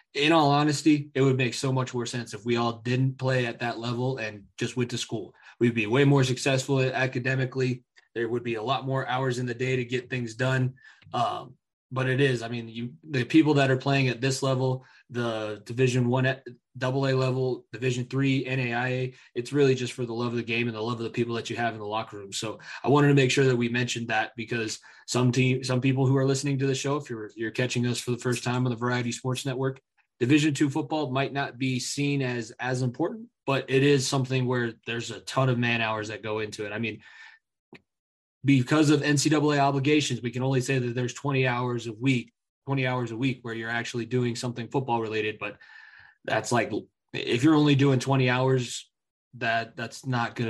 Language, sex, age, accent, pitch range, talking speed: English, male, 20-39, American, 120-135 Hz, 225 wpm